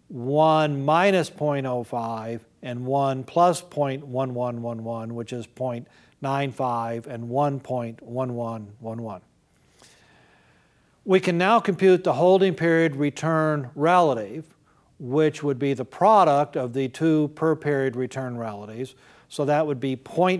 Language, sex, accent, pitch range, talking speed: English, male, American, 125-155 Hz, 110 wpm